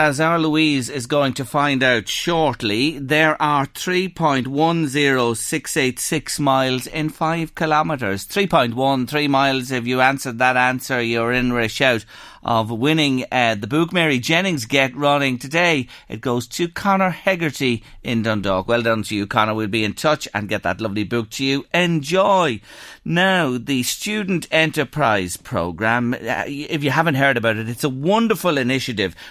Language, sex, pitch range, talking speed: English, male, 120-160 Hz, 175 wpm